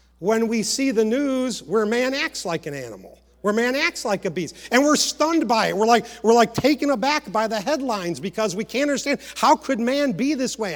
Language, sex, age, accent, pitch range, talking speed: English, male, 50-69, American, 170-250 Hz, 230 wpm